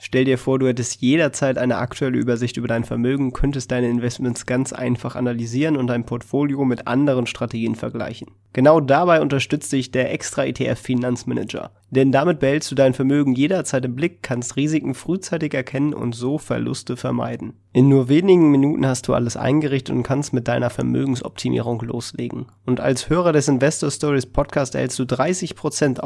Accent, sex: German, male